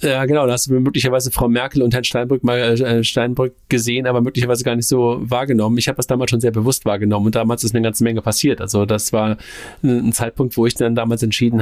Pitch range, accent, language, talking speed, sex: 110-125 Hz, German, German, 240 wpm, male